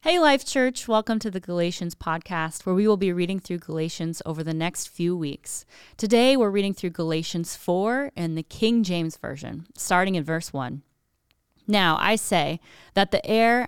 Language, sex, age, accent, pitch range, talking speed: English, female, 30-49, American, 155-205 Hz, 180 wpm